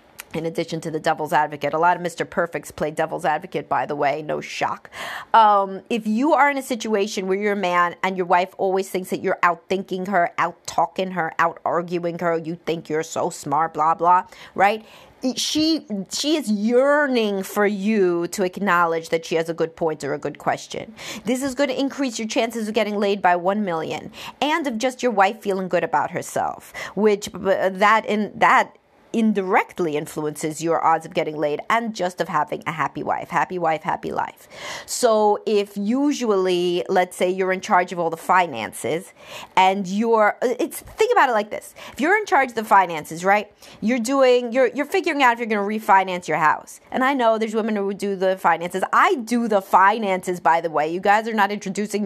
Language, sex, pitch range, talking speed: English, female, 170-225 Hz, 200 wpm